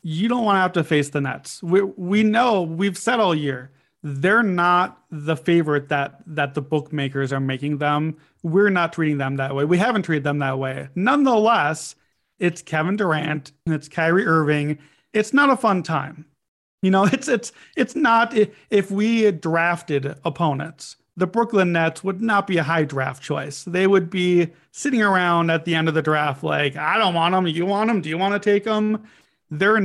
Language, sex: English, male